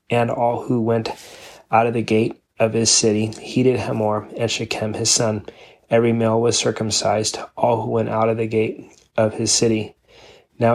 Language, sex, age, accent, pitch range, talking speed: English, male, 30-49, American, 110-115 Hz, 180 wpm